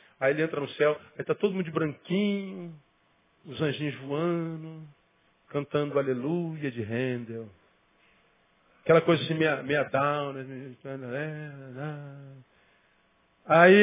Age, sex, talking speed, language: 40-59, male, 110 wpm, Portuguese